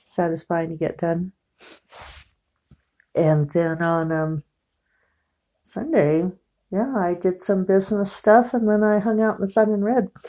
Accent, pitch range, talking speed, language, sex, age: American, 145-195 Hz, 145 wpm, English, female, 50-69